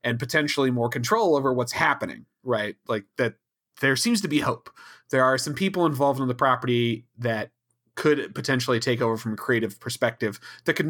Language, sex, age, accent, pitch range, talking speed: English, male, 30-49, American, 115-140 Hz, 185 wpm